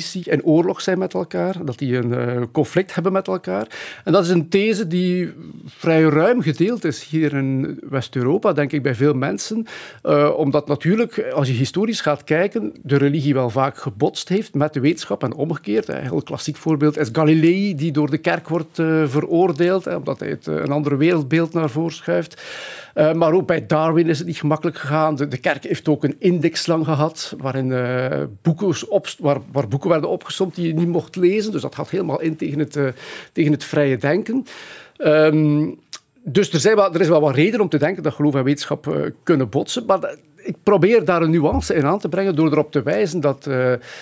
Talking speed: 210 wpm